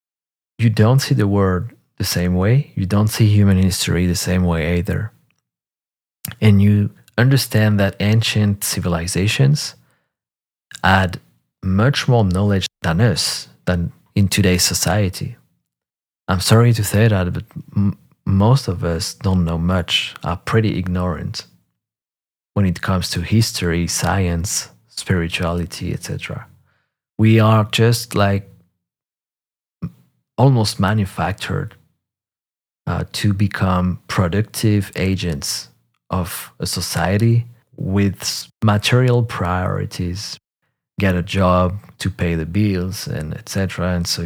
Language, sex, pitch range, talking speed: English, male, 90-105 Hz, 115 wpm